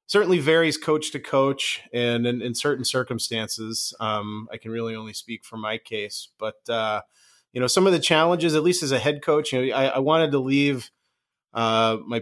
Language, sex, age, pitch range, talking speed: English, male, 30-49, 115-140 Hz, 205 wpm